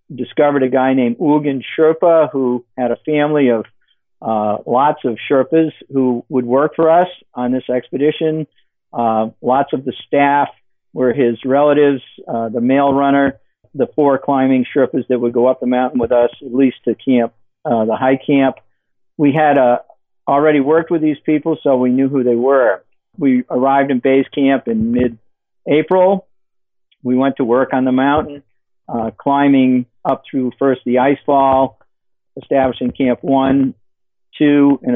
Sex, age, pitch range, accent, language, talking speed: male, 50-69, 125-145 Hz, American, English, 165 wpm